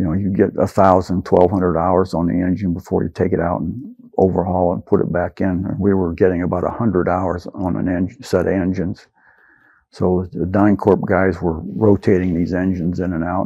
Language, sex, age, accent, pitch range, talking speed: English, male, 50-69, American, 90-100 Hz, 215 wpm